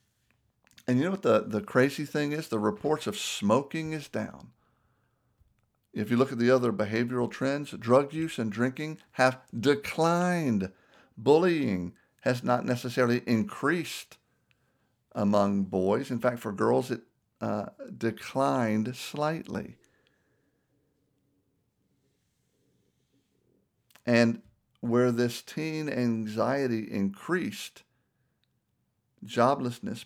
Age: 60-79